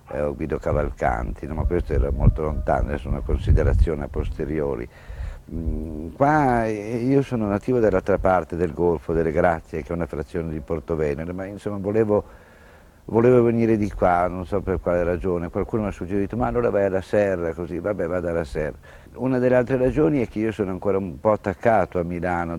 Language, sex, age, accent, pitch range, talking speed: Italian, male, 60-79, native, 80-95 Hz, 185 wpm